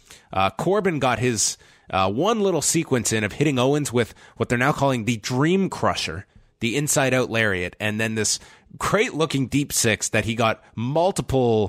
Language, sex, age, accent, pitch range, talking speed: English, male, 30-49, American, 100-135 Hz, 180 wpm